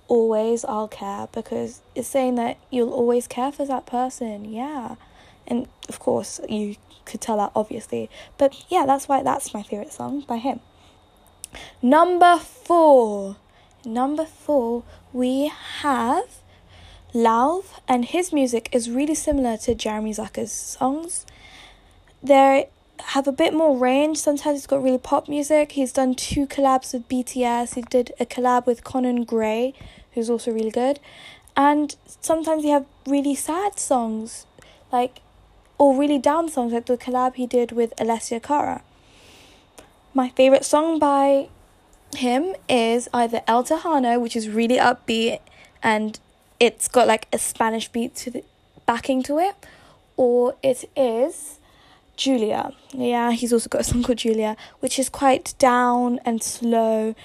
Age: 10-29